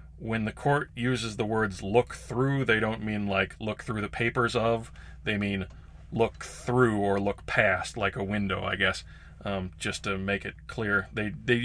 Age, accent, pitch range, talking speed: 30-49, American, 95-125 Hz, 190 wpm